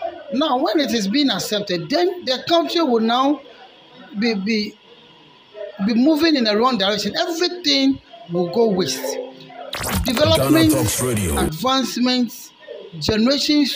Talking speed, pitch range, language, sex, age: 115 wpm, 190-280 Hz, English, male, 50-69